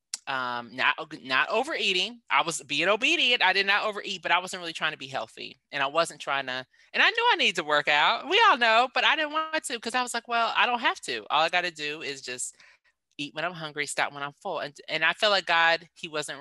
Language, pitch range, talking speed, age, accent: English, 135-185 Hz, 265 wpm, 20-39, American